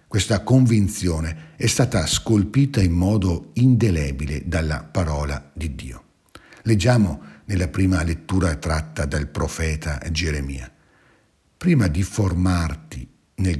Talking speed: 105 wpm